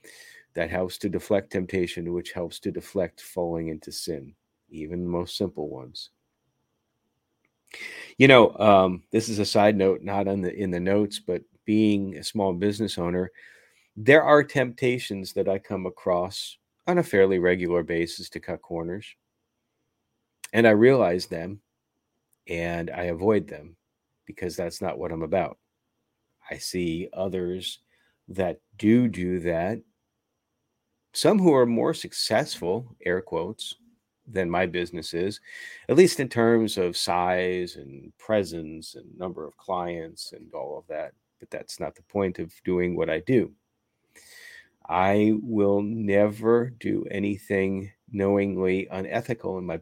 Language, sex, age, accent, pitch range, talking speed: English, male, 40-59, American, 90-110 Hz, 140 wpm